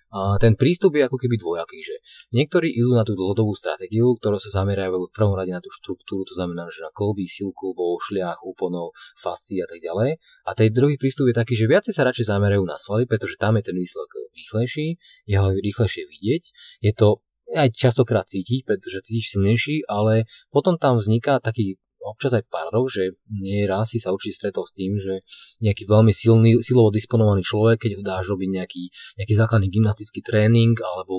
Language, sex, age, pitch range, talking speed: Slovak, male, 30-49, 95-115 Hz, 195 wpm